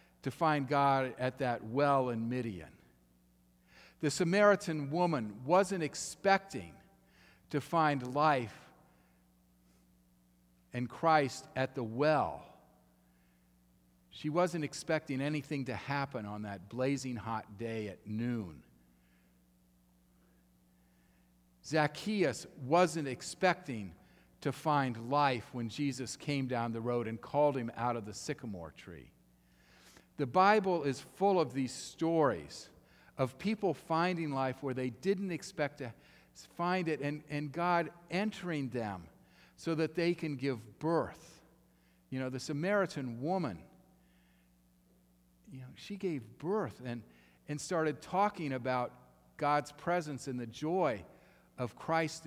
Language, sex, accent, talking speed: English, male, American, 120 wpm